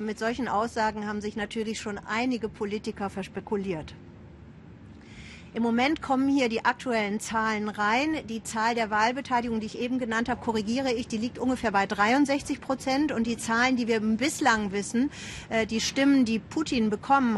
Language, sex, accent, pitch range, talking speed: German, female, German, 215-255 Hz, 160 wpm